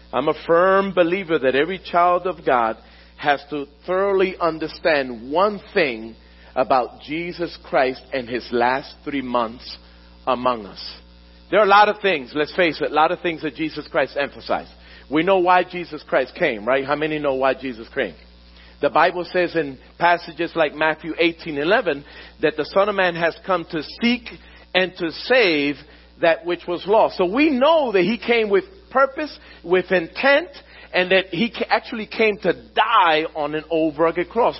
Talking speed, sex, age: 175 wpm, male, 40-59